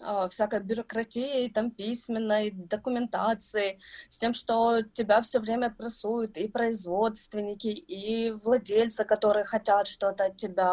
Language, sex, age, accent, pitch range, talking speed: Russian, female, 20-39, native, 200-255 Hz, 115 wpm